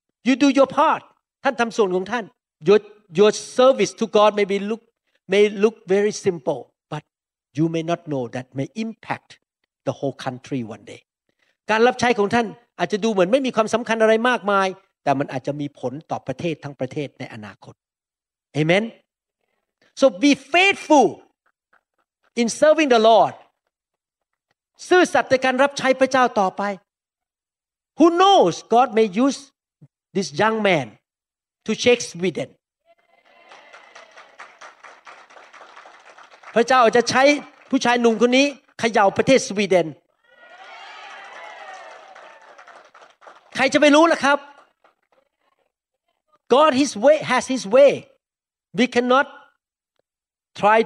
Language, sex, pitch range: Thai, male, 195-270 Hz